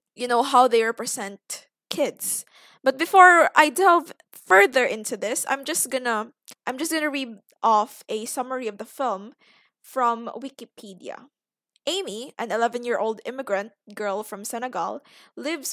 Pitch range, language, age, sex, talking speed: 210-285 Hz, English, 20-39, female, 135 wpm